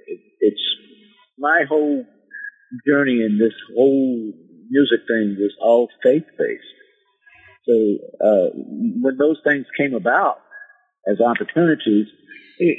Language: English